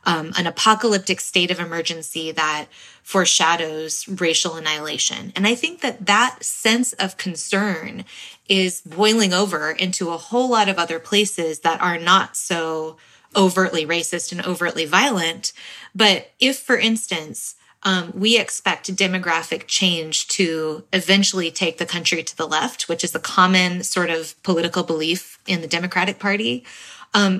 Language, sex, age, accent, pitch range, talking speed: English, female, 20-39, American, 170-205 Hz, 145 wpm